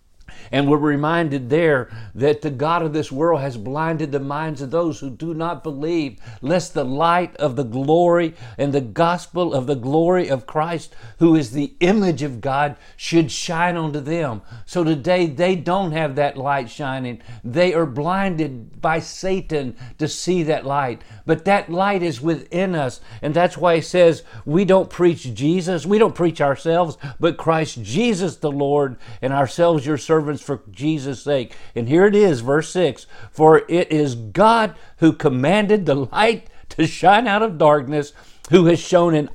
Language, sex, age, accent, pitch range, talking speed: English, male, 50-69, American, 140-175 Hz, 175 wpm